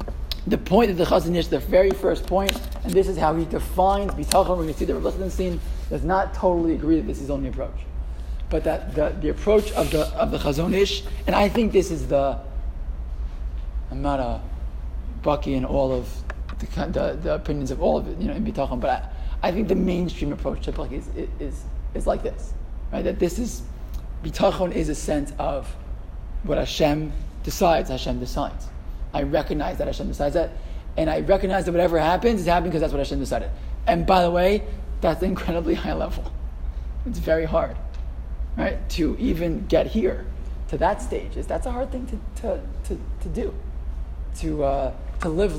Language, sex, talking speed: English, male, 195 wpm